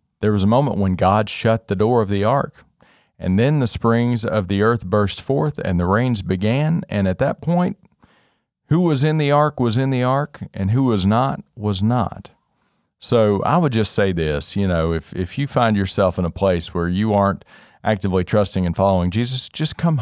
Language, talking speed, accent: English, 210 wpm, American